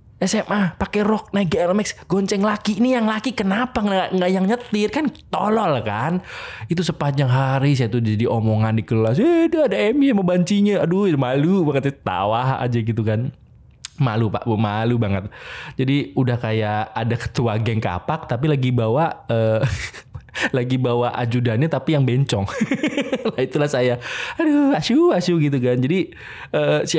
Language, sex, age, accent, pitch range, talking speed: Indonesian, male, 20-39, native, 115-185 Hz, 160 wpm